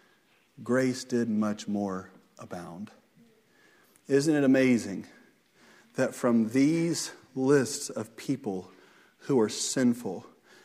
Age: 40-59